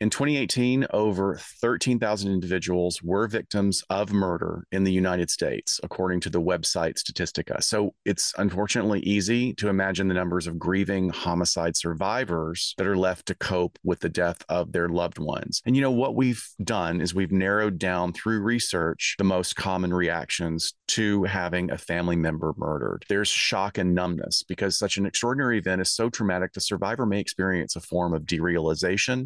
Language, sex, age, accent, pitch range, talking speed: English, male, 30-49, American, 90-105 Hz, 170 wpm